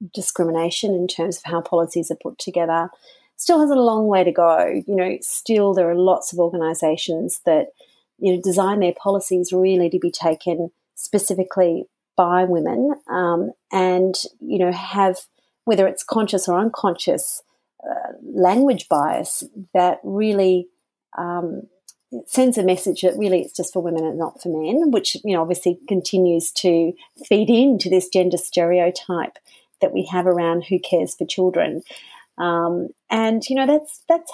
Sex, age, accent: female, 40-59, Australian